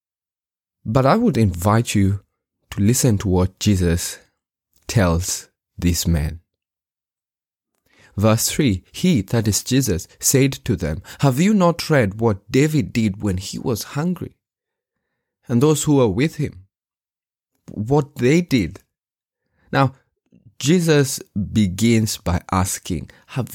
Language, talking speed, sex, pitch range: English, 120 wpm, male, 90-120 Hz